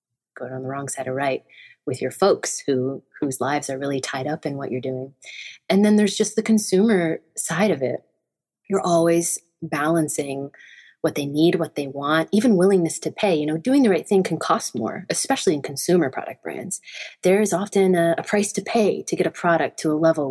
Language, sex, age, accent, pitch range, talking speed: English, female, 30-49, American, 145-185 Hz, 215 wpm